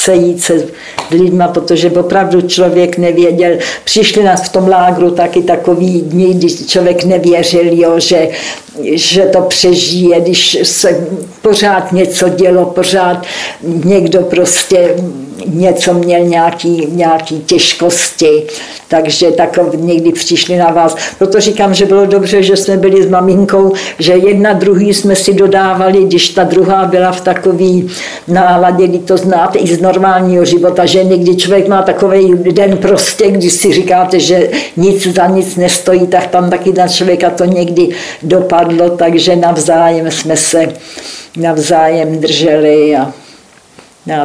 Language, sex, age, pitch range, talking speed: Slovak, female, 60-79, 170-185 Hz, 135 wpm